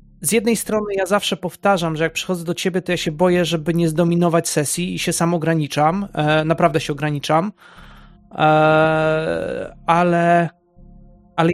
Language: Polish